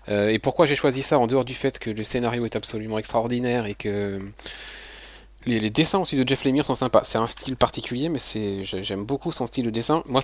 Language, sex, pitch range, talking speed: French, male, 105-145 Hz, 230 wpm